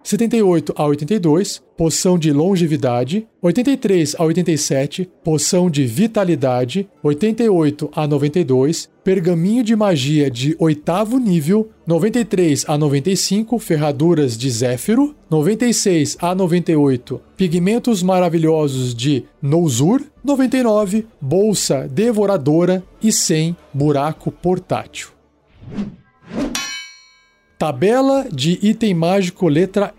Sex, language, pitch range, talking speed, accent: male, Portuguese, 145-200 Hz, 90 wpm, Brazilian